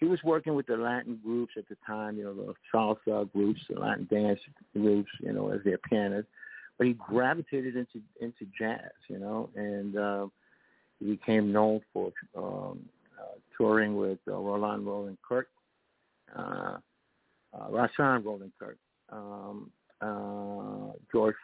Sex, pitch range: male, 105-125 Hz